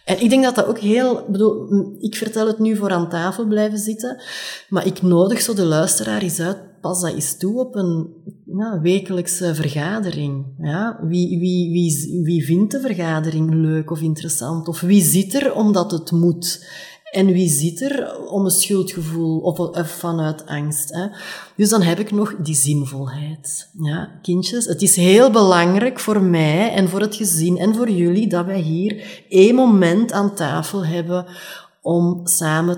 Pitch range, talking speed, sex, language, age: 165-200 Hz, 170 wpm, female, Dutch, 30-49